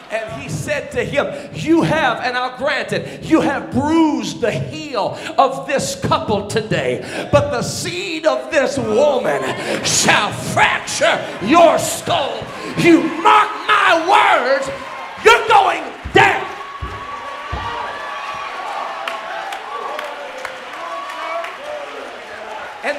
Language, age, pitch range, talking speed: English, 40-59, 285-395 Hz, 100 wpm